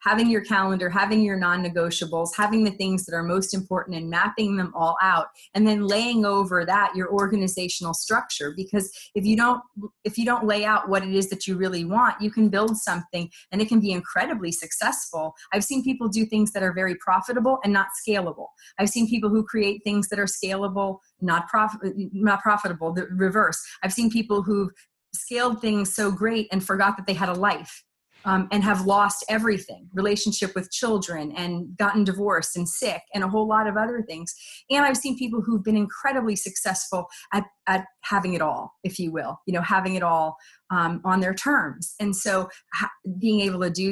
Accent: American